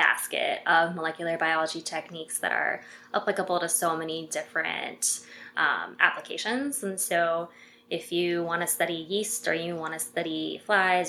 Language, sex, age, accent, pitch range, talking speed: English, female, 20-39, American, 170-205 Hz, 150 wpm